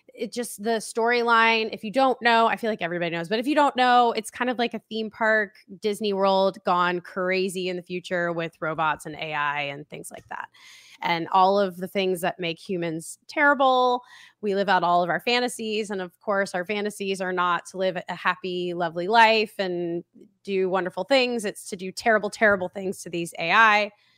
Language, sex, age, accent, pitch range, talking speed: English, female, 20-39, American, 175-225 Hz, 205 wpm